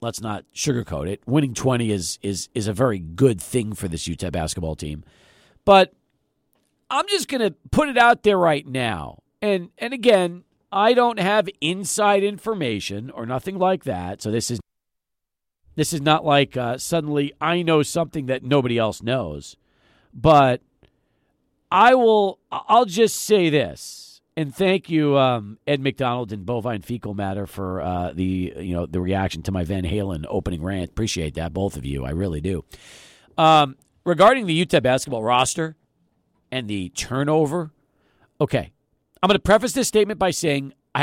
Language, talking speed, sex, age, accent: English, 165 wpm, male, 40-59, American